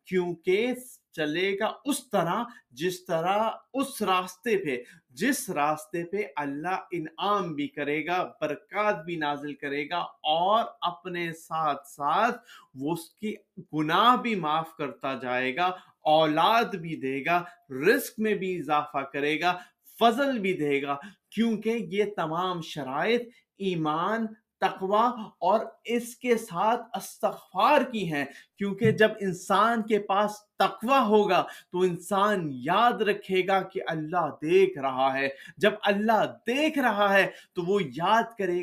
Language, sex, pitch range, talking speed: Urdu, male, 165-220 Hz, 140 wpm